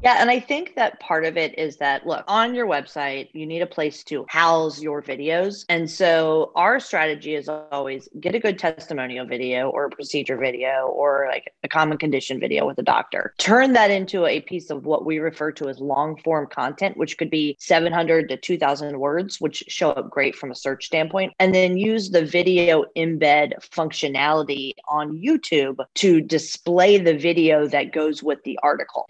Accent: American